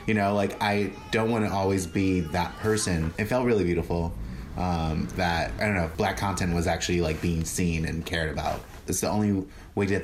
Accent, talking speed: American, 210 wpm